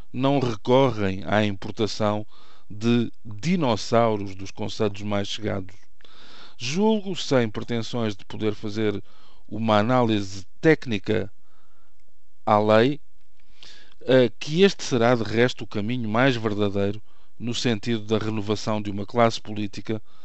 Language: Portuguese